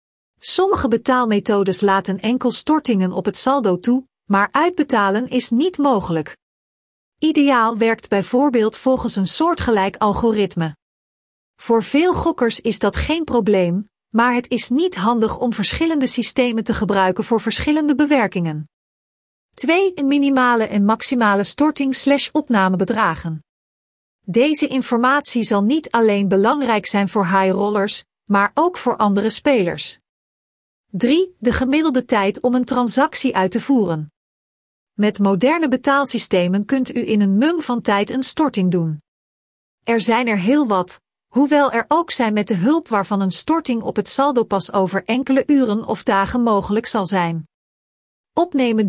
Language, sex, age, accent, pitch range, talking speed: Dutch, female, 40-59, Dutch, 200-265 Hz, 140 wpm